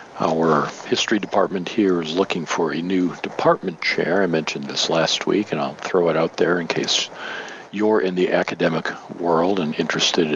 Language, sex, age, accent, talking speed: English, male, 50-69, American, 180 wpm